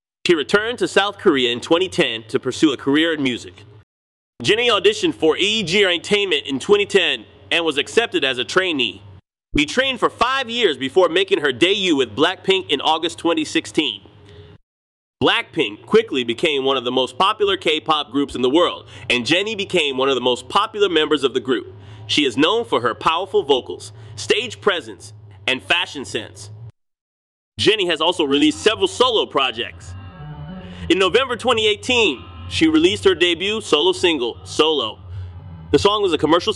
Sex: male